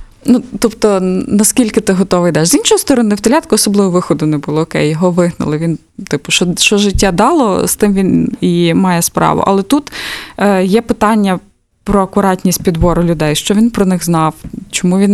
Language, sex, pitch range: Ukrainian, female, 175-215 Hz